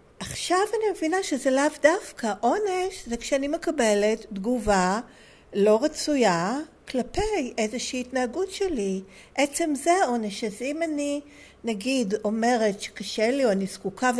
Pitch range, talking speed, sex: 210-295 Hz, 125 wpm, female